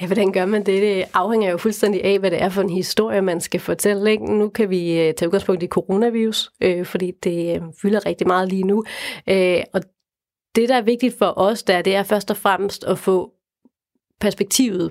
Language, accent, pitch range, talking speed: Danish, native, 185-215 Hz, 190 wpm